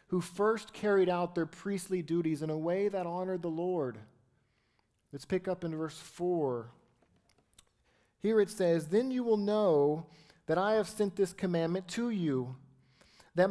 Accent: American